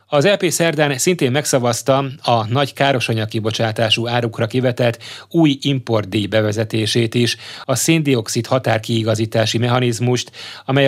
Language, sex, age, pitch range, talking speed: Hungarian, male, 30-49, 110-135 Hz, 105 wpm